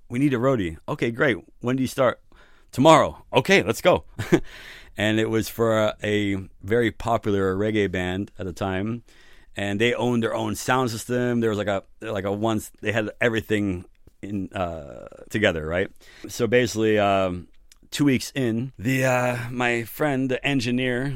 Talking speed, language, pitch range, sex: 170 wpm, English, 95-115 Hz, male